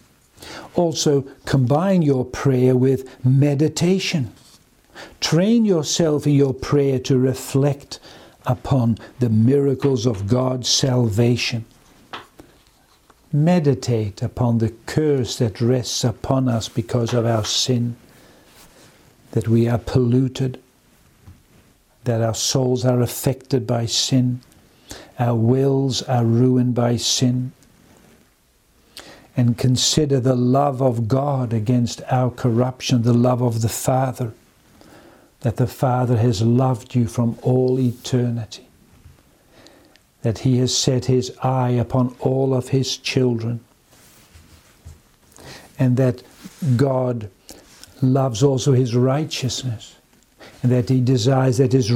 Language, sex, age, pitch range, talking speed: English, male, 60-79, 120-135 Hz, 110 wpm